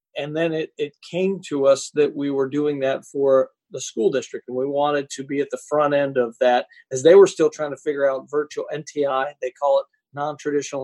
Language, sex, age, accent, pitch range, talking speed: English, male, 40-59, American, 135-165 Hz, 225 wpm